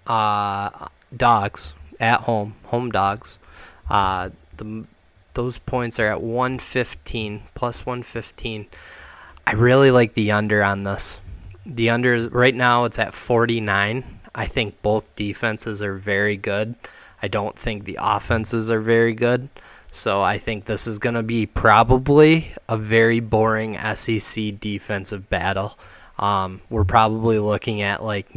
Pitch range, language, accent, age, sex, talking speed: 100-115 Hz, English, American, 20-39, male, 140 wpm